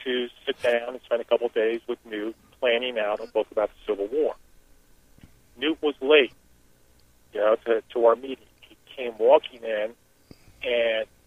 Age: 40-59